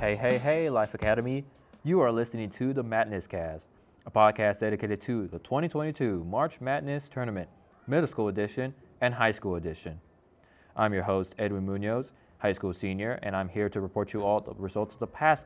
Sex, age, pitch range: male, 20-39, 95-120 Hz